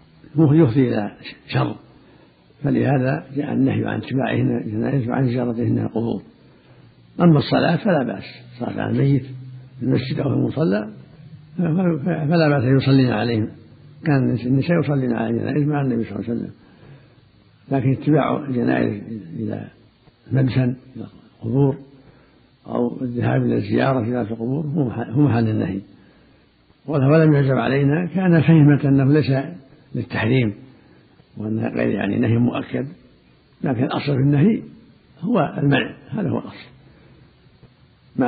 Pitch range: 120-145 Hz